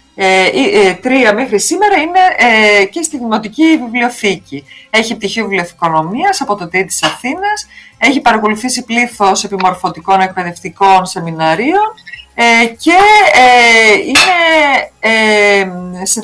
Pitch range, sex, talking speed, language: 190-280 Hz, female, 115 wpm, Greek